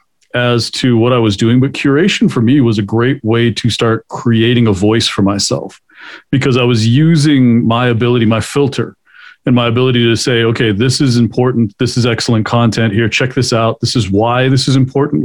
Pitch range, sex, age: 115-130 Hz, male, 40-59